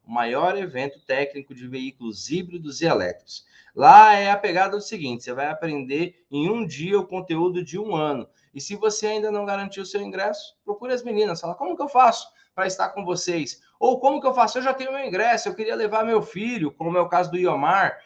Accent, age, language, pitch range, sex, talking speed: Brazilian, 20-39, Portuguese, 160-240 Hz, male, 225 wpm